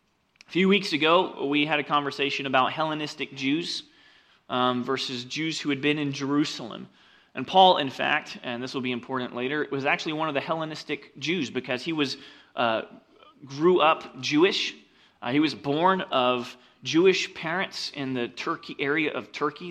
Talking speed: 170 wpm